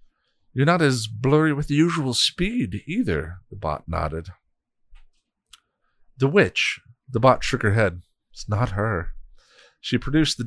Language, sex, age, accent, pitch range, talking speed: English, male, 40-59, American, 85-120 Hz, 145 wpm